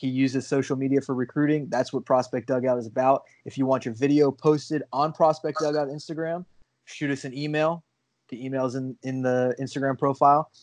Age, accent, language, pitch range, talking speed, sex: 20-39, American, English, 130-145 Hz, 190 wpm, male